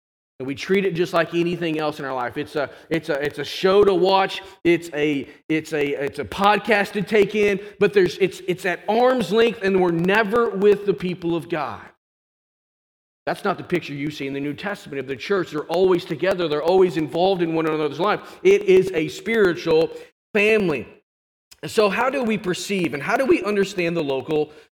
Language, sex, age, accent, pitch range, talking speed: English, male, 40-59, American, 170-230 Hz, 205 wpm